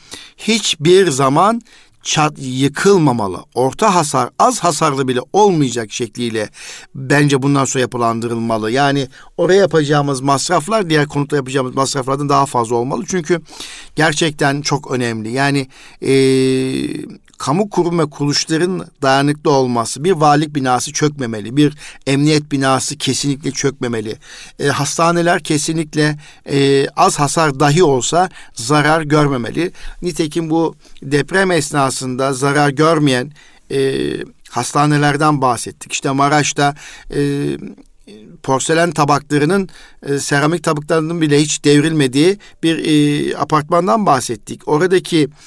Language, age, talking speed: Turkish, 50-69, 110 wpm